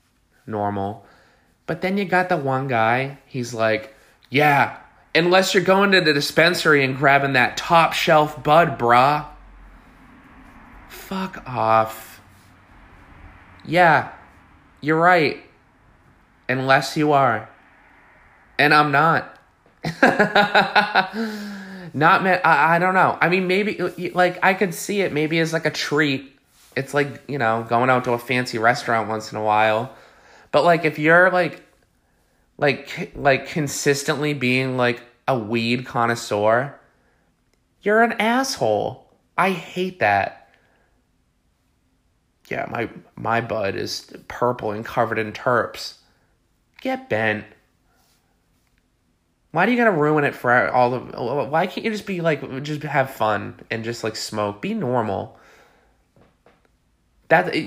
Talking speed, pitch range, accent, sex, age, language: 130 wpm, 115-180 Hz, American, male, 20-39, English